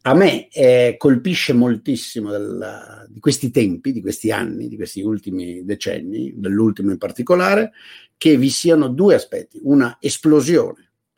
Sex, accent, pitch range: male, native, 110-165 Hz